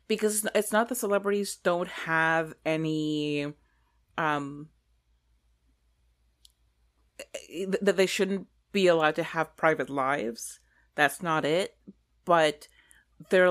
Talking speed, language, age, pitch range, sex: 100 wpm, English, 30-49, 140-180 Hz, female